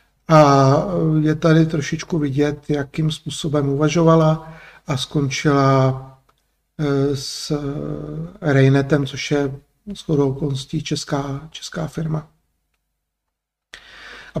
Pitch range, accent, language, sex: 150-175 Hz, native, Czech, male